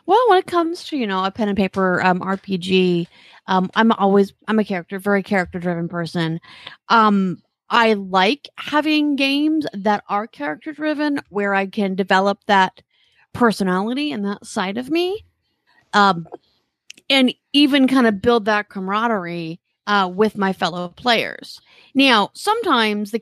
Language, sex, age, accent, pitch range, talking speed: English, female, 30-49, American, 190-245 Hz, 145 wpm